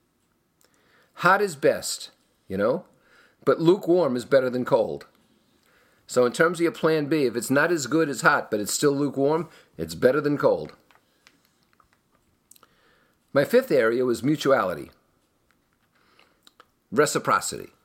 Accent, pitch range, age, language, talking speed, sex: American, 120-155 Hz, 50-69, English, 130 wpm, male